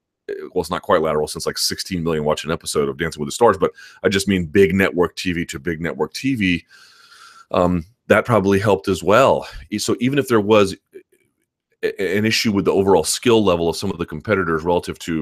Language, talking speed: English, 210 wpm